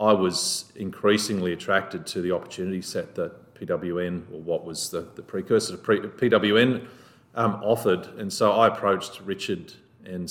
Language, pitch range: English, 90-110 Hz